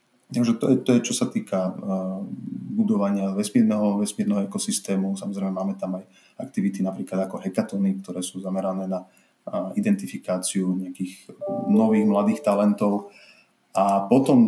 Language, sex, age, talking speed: Slovak, male, 20-39, 125 wpm